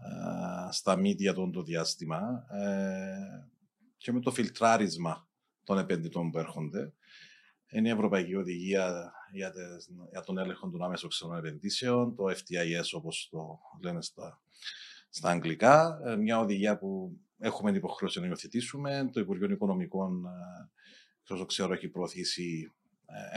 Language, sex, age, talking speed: Greek, male, 40-59, 140 wpm